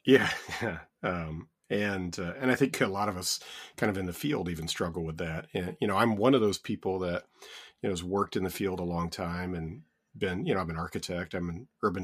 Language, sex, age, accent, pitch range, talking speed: English, male, 40-59, American, 85-100 Hz, 245 wpm